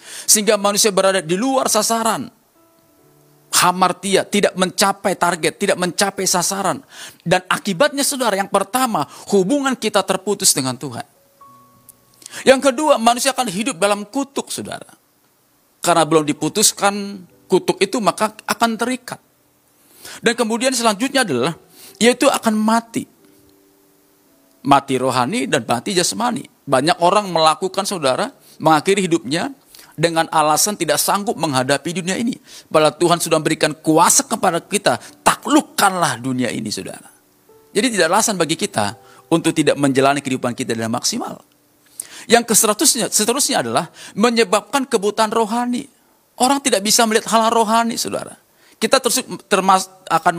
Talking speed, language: 120 wpm, Indonesian